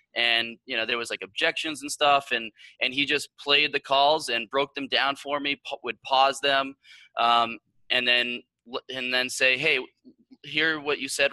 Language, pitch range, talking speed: English, 115-140 Hz, 190 wpm